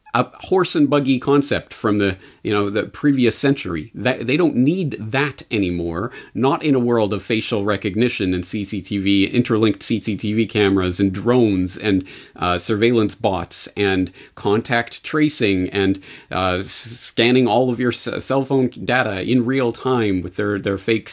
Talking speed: 160 wpm